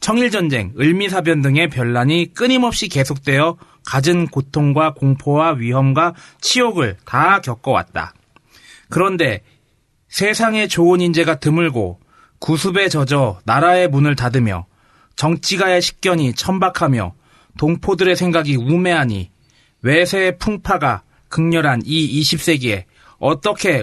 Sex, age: male, 30-49